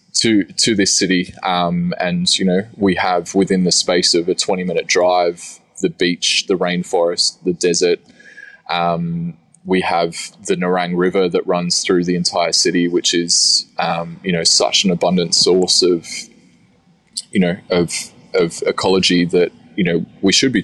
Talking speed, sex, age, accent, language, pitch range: 165 wpm, male, 20-39, Australian, English, 85-100 Hz